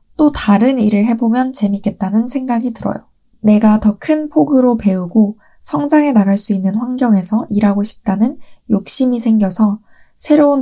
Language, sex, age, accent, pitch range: Korean, female, 20-39, native, 205-240 Hz